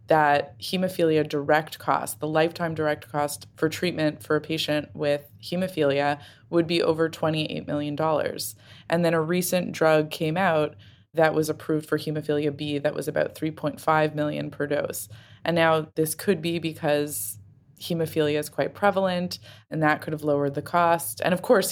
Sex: female